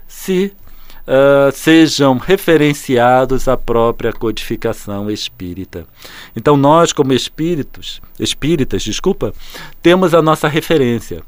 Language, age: Portuguese, 50-69